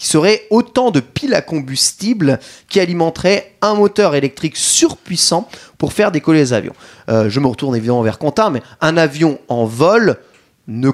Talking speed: 170 wpm